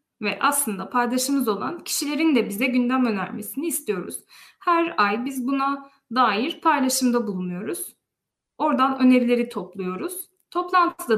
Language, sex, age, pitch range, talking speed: Turkish, female, 10-29, 215-295 Hz, 115 wpm